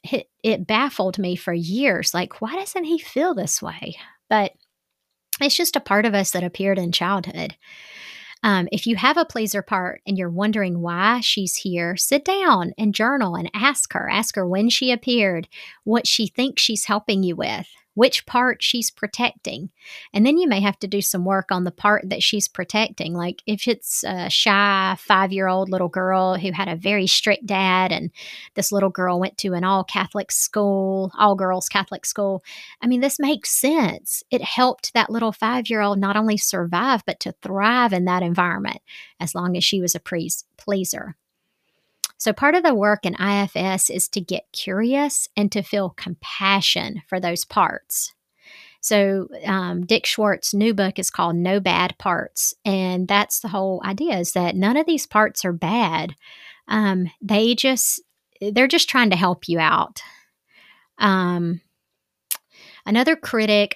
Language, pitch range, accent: English, 185-225 Hz, American